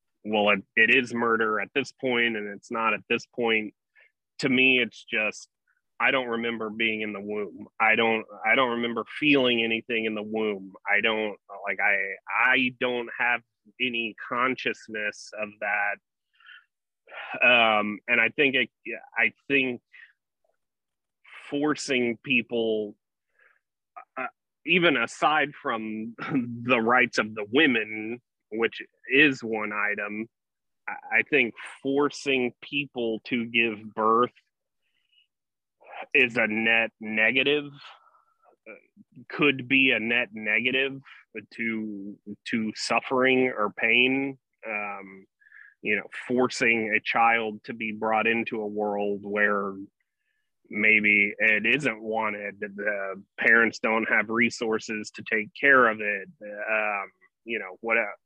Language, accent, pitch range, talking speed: English, American, 105-125 Hz, 125 wpm